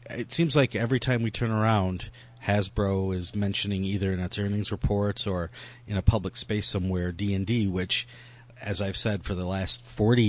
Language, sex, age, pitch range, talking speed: English, male, 40-59, 95-120 Hz, 180 wpm